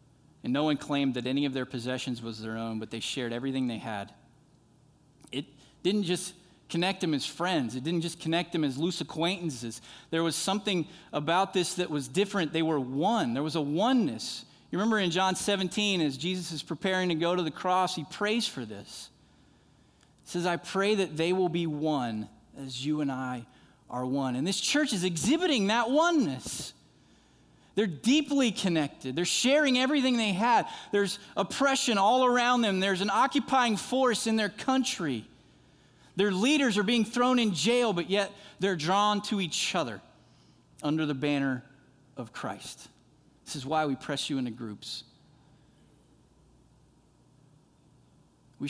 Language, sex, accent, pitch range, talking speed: English, male, American, 135-205 Hz, 170 wpm